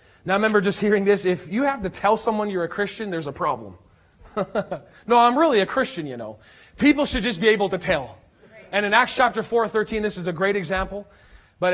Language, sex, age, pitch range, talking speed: English, male, 40-59, 185-240 Hz, 225 wpm